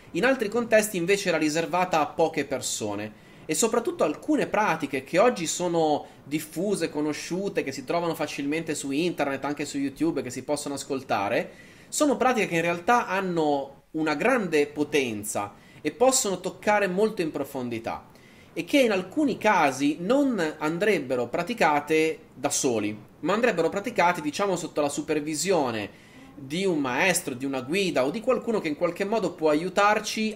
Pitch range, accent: 135-190 Hz, native